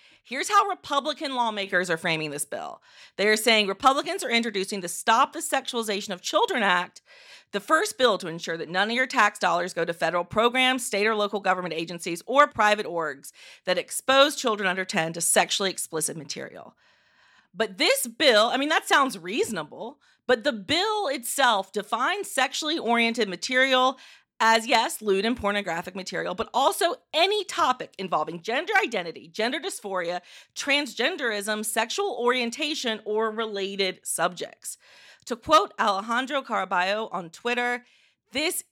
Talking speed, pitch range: 150 wpm, 185-270 Hz